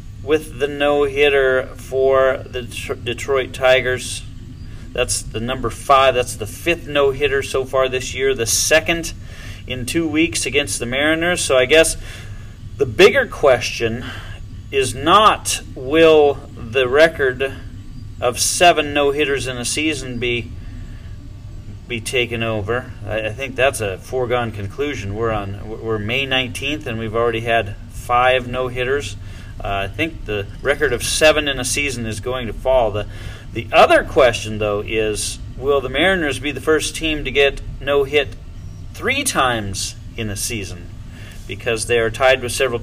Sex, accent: male, American